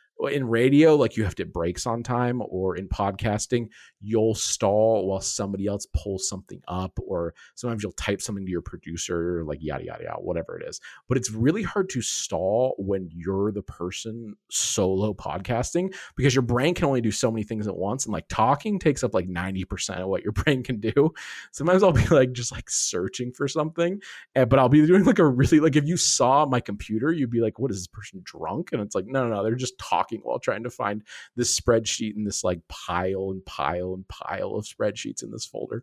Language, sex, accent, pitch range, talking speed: English, male, American, 100-135 Hz, 220 wpm